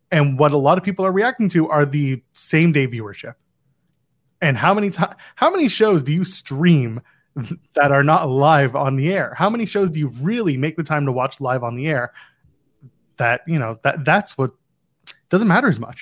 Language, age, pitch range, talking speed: English, 20-39, 125-165 Hz, 210 wpm